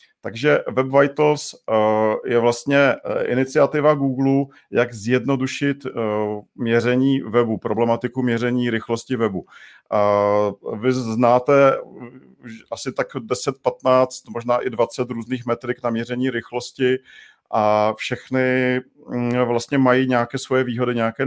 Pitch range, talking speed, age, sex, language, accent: 115-135 Hz, 105 wpm, 40-59, male, Czech, native